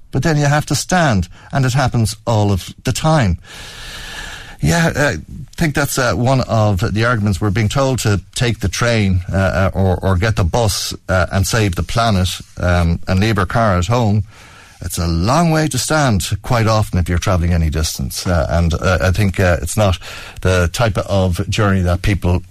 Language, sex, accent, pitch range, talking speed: English, male, Irish, 85-110 Hz, 195 wpm